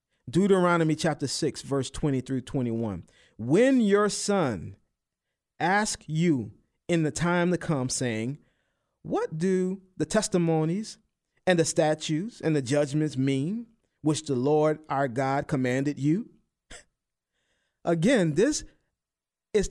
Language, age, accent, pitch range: English, 40-59, American, 145-210 Hz